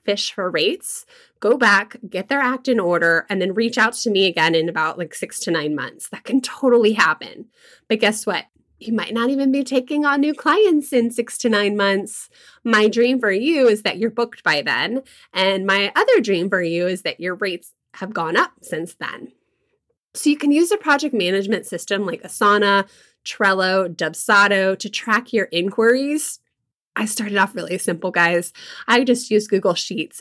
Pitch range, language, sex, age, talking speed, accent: 180-240 Hz, English, female, 20-39, 195 wpm, American